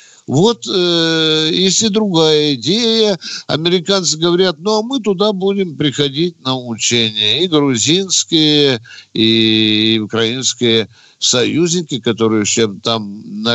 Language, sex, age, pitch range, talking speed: Russian, male, 60-79, 115-165 Hz, 100 wpm